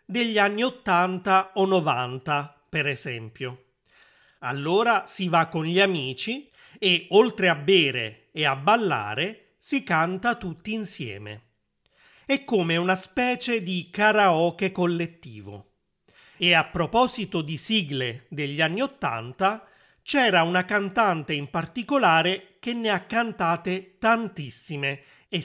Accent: native